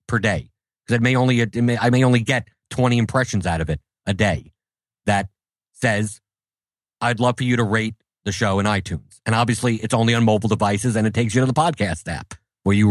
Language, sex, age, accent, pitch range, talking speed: English, male, 50-69, American, 105-130 Hz, 205 wpm